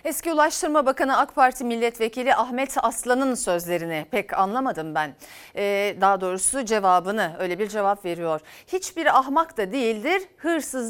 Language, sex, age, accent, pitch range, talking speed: Turkish, female, 40-59, native, 200-300 Hz, 140 wpm